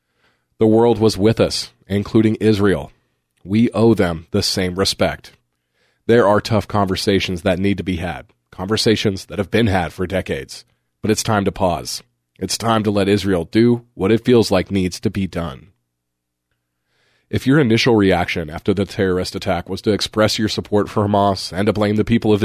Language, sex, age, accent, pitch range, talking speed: English, male, 30-49, American, 95-110 Hz, 185 wpm